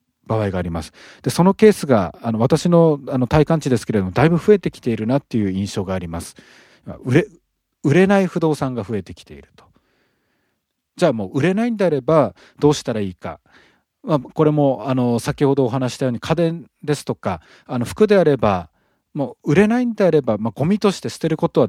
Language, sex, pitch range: Japanese, male, 110-170 Hz